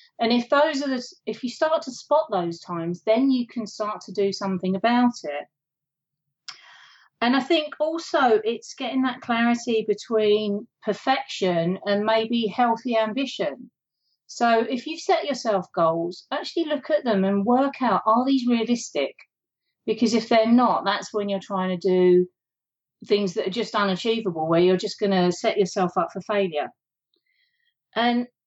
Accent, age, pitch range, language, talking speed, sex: British, 40-59, 195-250 Hz, English, 160 wpm, female